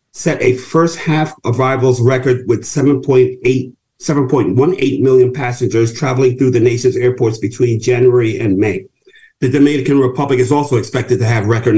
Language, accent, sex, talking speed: English, American, male, 145 wpm